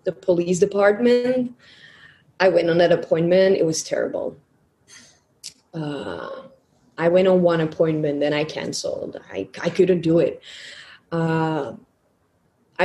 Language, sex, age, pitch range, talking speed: English, female, 20-39, 165-200 Hz, 120 wpm